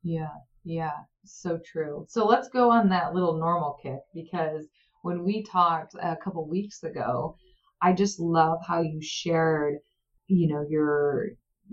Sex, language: female, English